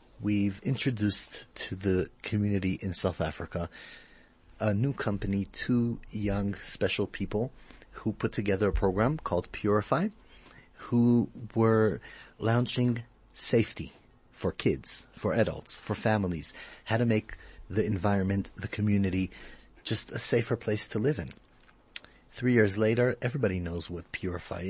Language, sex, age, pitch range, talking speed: English, male, 40-59, 95-115 Hz, 130 wpm